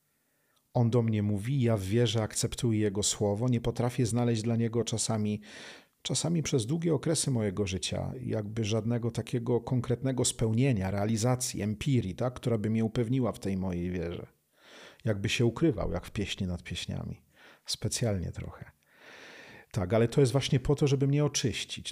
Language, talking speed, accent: Polish, 155 wpm, native